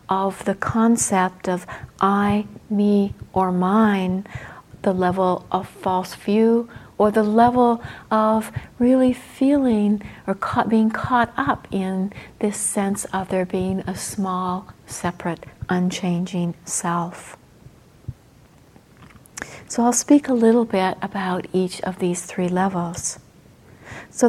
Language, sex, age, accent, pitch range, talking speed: English, female, 60-79, American, 185-215 Hz, 120 wpm